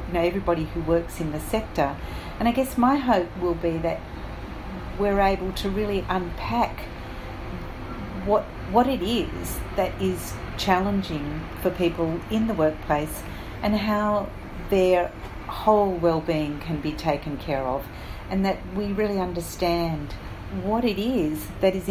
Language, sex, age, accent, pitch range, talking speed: English, female, 40-59, Australian, 160-195 Hz, 140 wpm